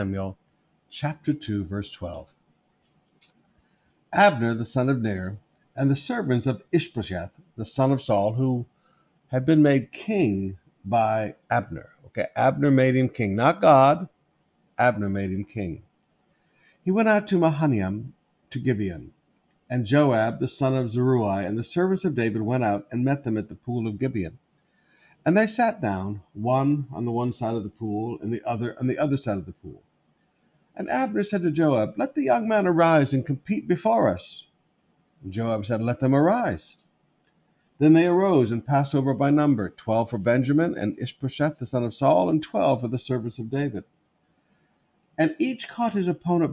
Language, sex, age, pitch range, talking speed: English, male, 60-79, 110-150 Hz, 175 wpm